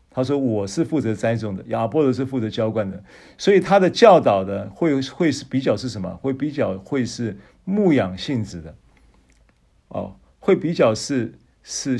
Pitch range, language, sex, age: 100-140 Hz, Chinese, male, 50-69